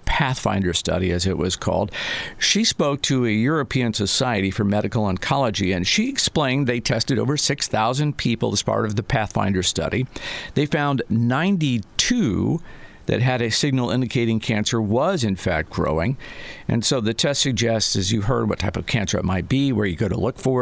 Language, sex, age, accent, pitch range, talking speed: English, male, 50-69, American, 105-140 Hz, 185 wpm